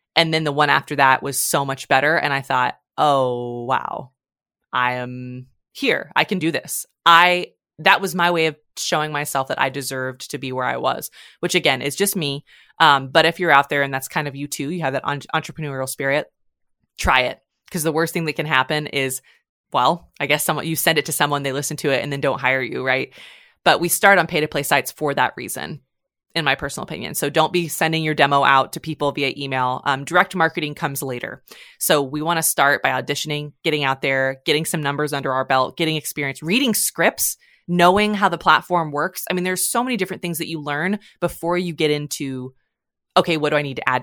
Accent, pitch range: American, 135-170 Hz